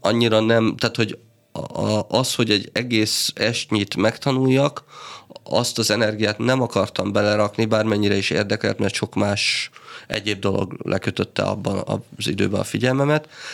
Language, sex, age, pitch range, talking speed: Hungarian, male, 30-49, 100-115 Hz, 135 wpm